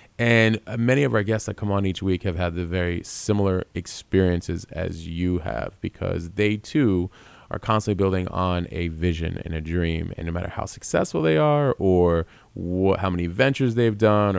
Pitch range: 90-100 Hz